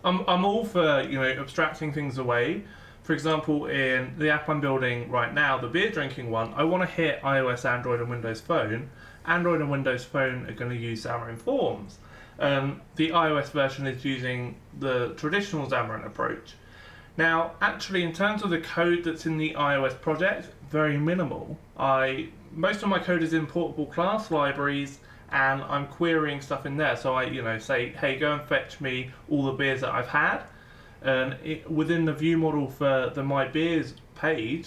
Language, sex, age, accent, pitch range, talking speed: English, male, 20-39, British, 135-160 Hz, 185 wpm